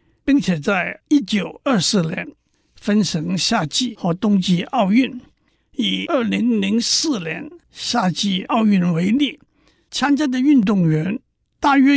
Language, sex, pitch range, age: Chinese, male, 175-245 Hz, 60-79